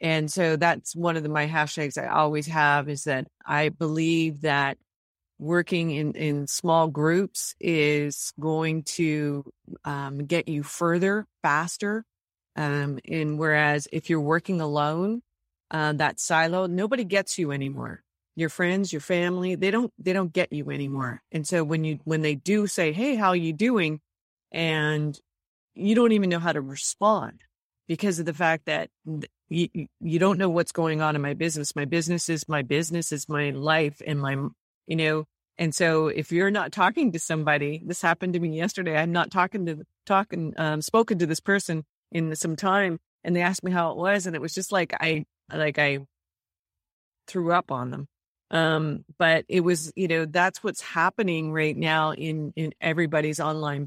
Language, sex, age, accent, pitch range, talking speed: English, female, 30-49, American, 150-175 Hz, 180 wpm